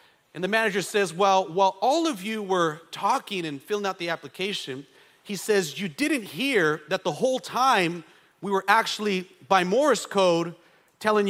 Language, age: English, 40-59